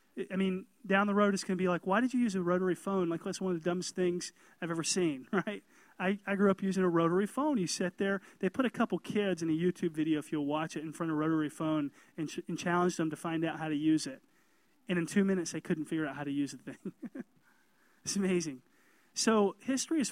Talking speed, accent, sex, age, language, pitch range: 265 wpm, American, male, 30-49, English, 165-210 Hz